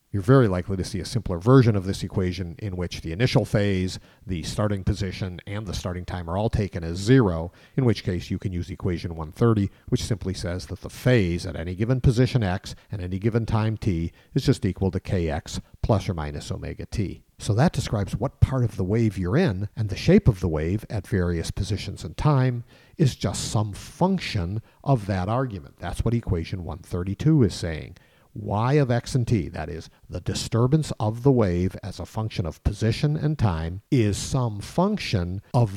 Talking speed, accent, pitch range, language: 200 wpm, American, 90-120 Hz, English